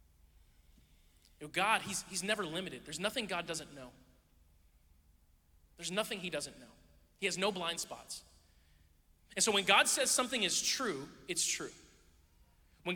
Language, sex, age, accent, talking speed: English, male, 30-49, American, 155 wpm